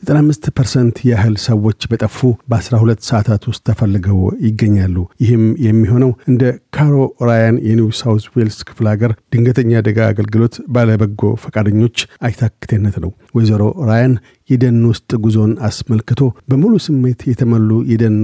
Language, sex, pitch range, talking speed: Amharic, male, 110-125 Hz, 110 wpm